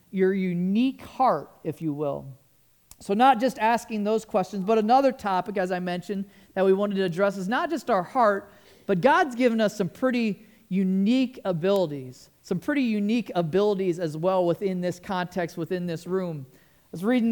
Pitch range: 180-230 Hz